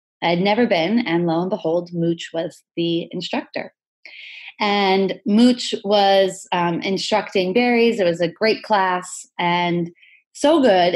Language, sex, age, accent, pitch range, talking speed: English, female, 20-39, American, 170-210 Hz, 140 wpm